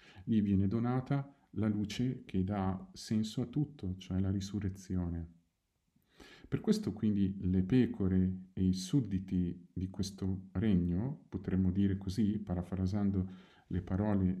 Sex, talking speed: male, 125 wpm